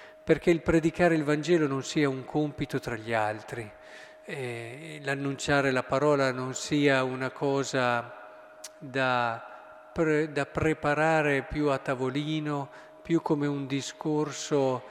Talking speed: 120 wpm